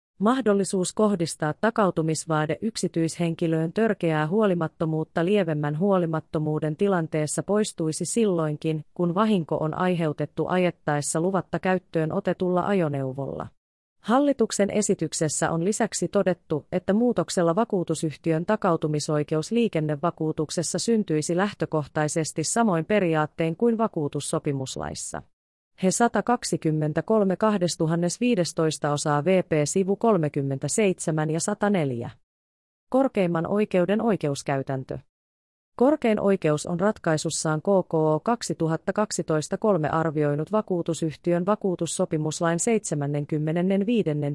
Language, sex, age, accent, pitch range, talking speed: Finnish, female, 30-49, native, 155-195 Hz, 75 wpm